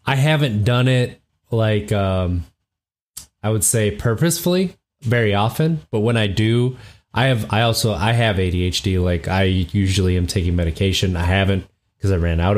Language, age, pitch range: English, 20-39, 95-115 Hz